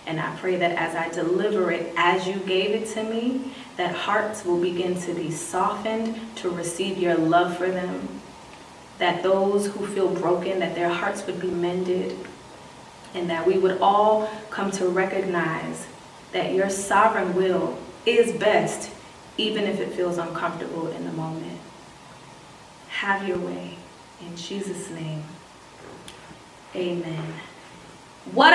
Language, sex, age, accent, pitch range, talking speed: English, female, 20-39, American, 175-230 Hz, 145 wpm